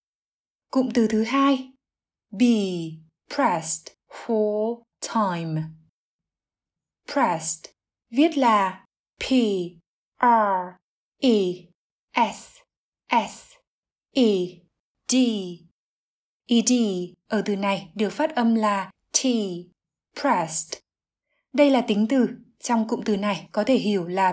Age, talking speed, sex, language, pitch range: 20-39, 100 wpm, female, Vietnamese, 195-245 Hz